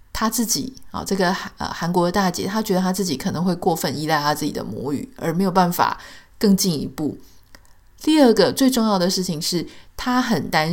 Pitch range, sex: 170-225 Hz, female